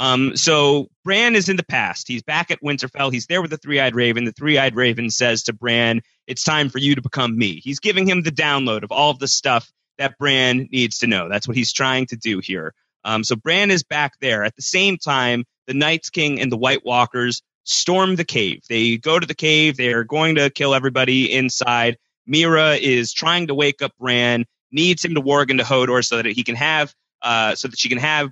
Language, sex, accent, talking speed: English, male, American, 230 wpm